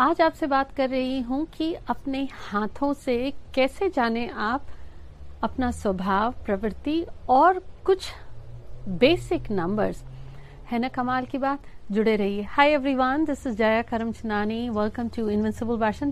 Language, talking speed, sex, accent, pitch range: Hindi, 135 wpm, female, native, 220-295 Hz